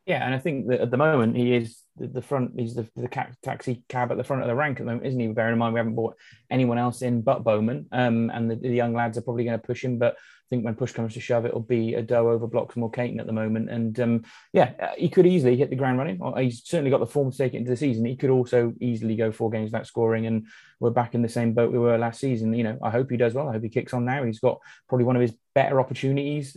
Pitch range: 120-135 Hz